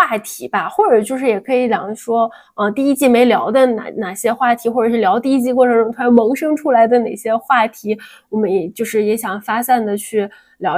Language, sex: Chinese, female